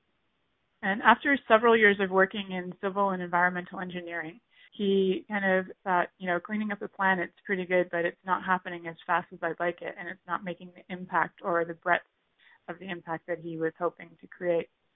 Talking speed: 205 wpm